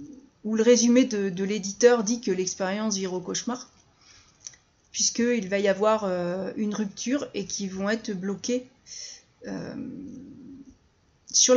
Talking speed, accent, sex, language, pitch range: 135 wpm, French, female, French, 215-265 Hz